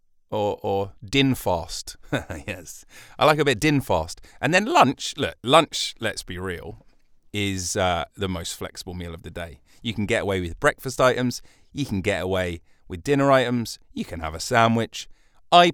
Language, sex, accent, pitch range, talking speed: English, male, British, 90-130 Hz, 185 wpm